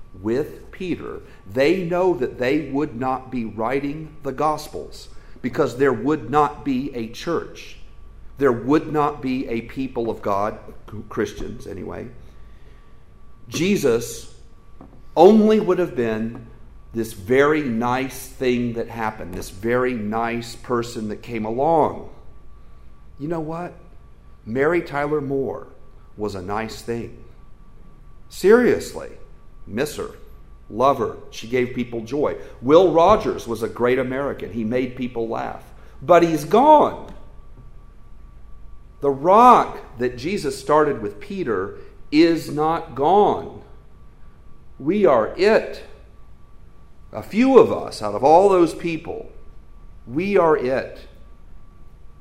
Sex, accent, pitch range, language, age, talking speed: male, American, 115-155 Hz, English, 50-69, 120 wpm